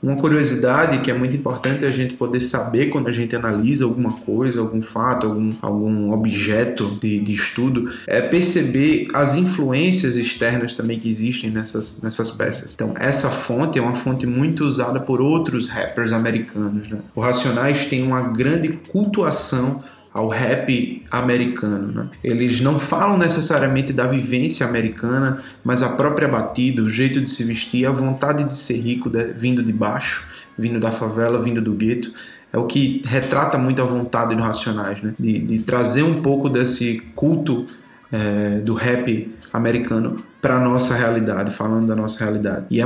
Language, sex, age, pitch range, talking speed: Portuguese, male, 20-39, 115-130 Hz, 165 wpm